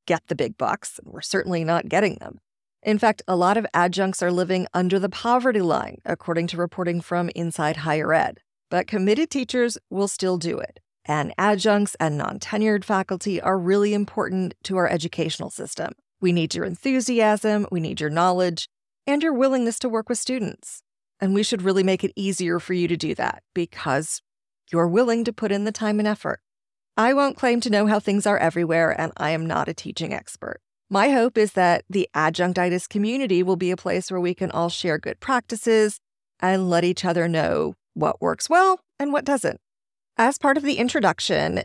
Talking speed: 195 wpm